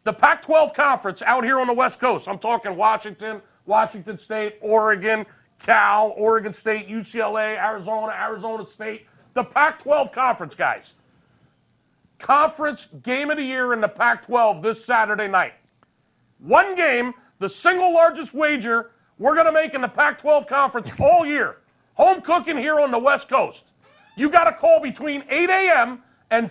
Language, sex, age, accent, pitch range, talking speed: English, male, 40-59, American, 220-300 Hz, 155 wpm